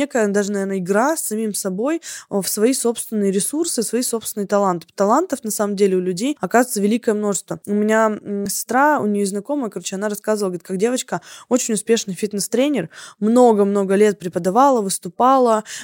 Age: 20-39